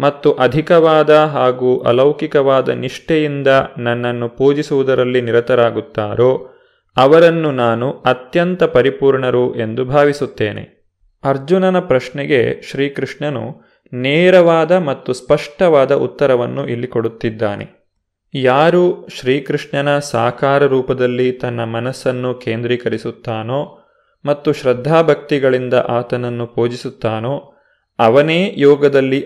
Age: 20-39